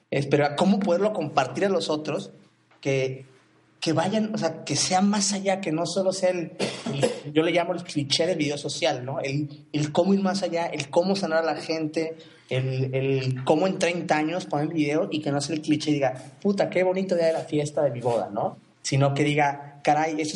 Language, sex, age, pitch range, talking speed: Spanish, male, 30-49, 130-160 Hz, 225 wpm